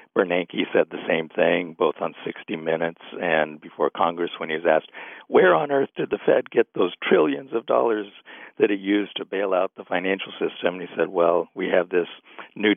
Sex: male